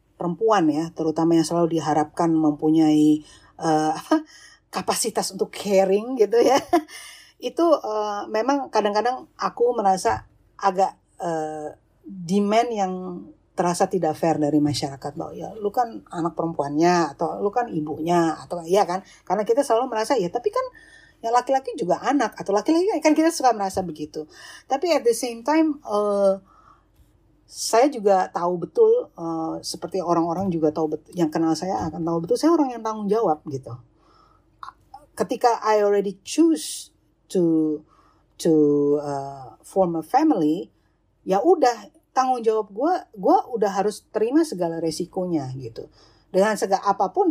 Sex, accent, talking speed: female, native, 140 wpm